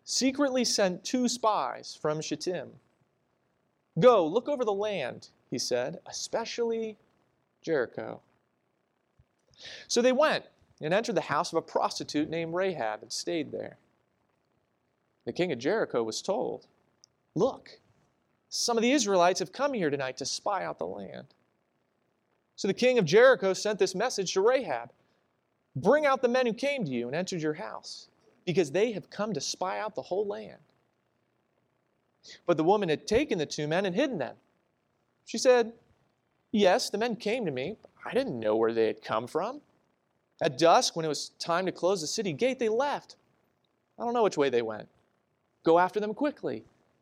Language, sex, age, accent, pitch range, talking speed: English, male, 30-49, American, 160-240 Hz, 170 wpm